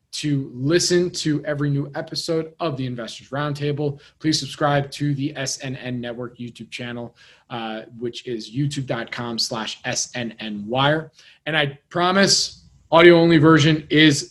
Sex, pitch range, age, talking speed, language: male, 125-160 Hz, 20-39, 125 wpm, English